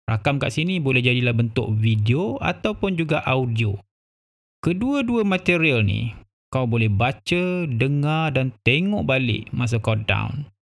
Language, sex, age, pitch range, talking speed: Malay, male, 20-39, 110-140 Hz, 130 wpm